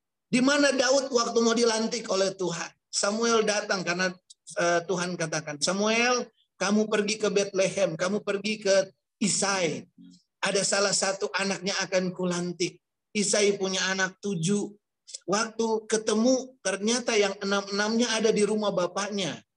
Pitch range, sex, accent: 175-215 Hz, male, native